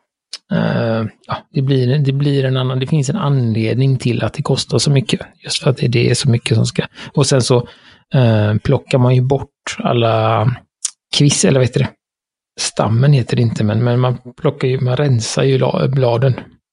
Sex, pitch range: male, 115-140 Hz